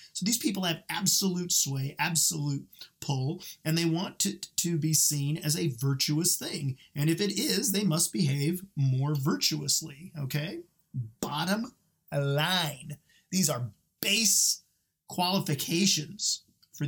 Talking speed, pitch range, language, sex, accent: 130 wpm, 135-170 Hz, English, male, American